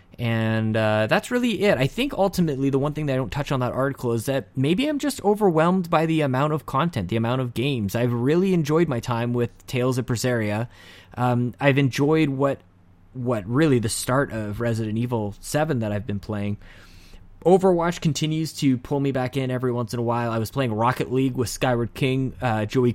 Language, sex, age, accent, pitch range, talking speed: English, male, 20-39, American, 110-145 Hz, 210 wpm